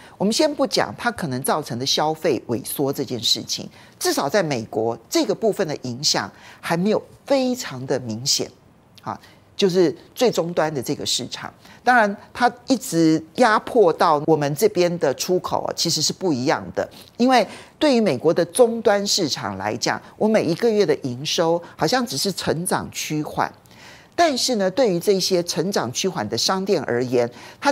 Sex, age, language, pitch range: male, 50-69, Chinese, 160-245 Hz